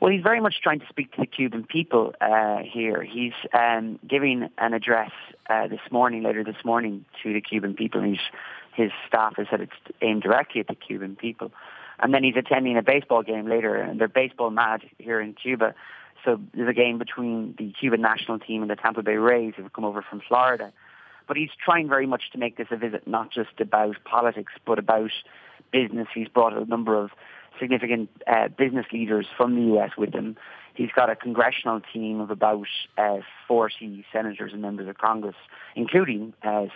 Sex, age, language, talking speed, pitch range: male, 30-49, English, 200 wpm, 110-125 Hz